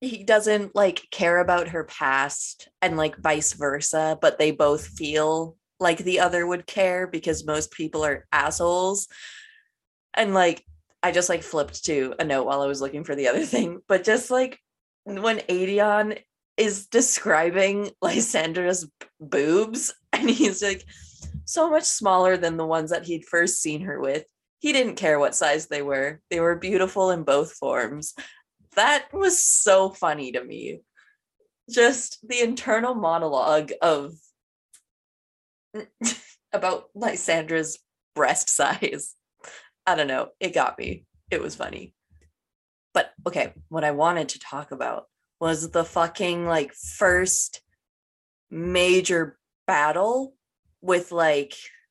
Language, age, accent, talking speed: English, 20-39, American, 140 wpm